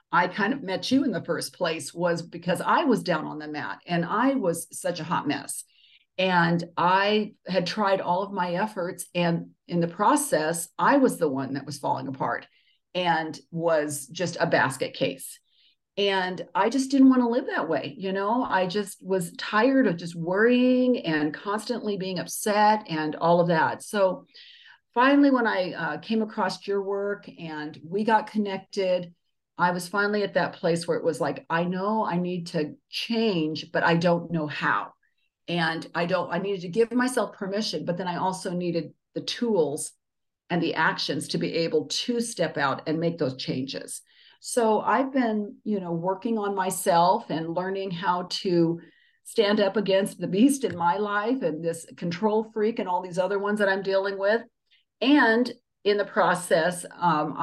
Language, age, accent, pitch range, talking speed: English, 50-69, American, 170-215 Hz, 185 wpm